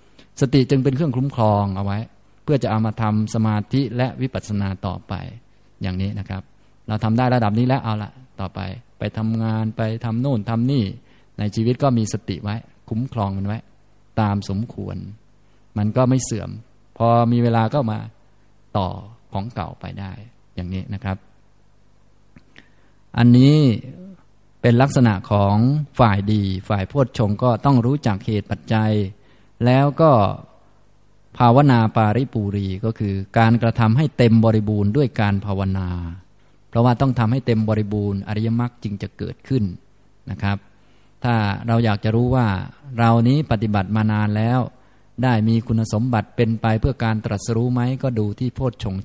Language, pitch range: Thai, 105-125 Hz